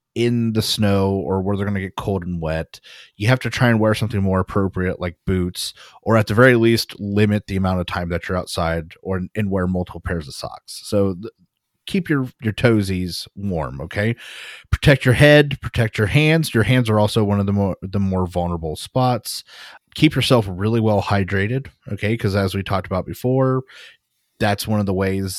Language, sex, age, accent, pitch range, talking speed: English, male, 30-49, American, 95-120 Hz, 205 wpm